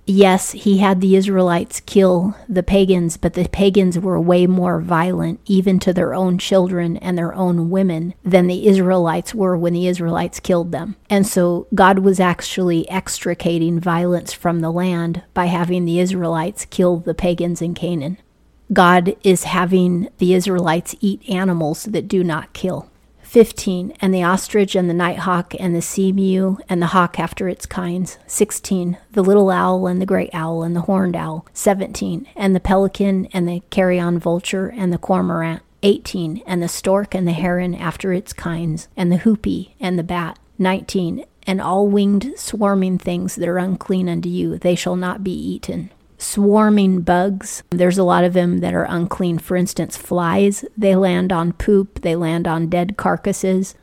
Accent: American